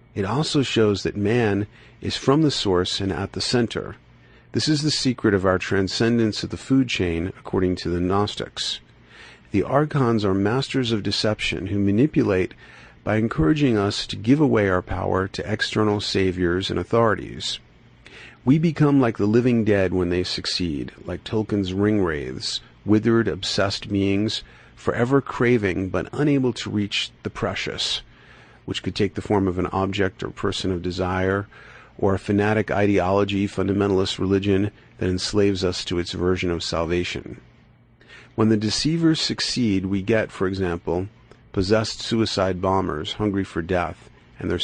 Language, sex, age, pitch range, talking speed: English, male, 50-69, 95-115 Hz, 155 wpm